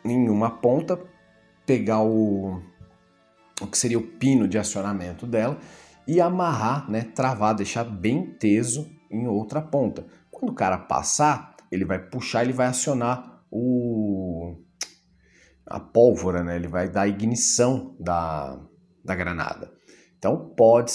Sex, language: male, Portuguese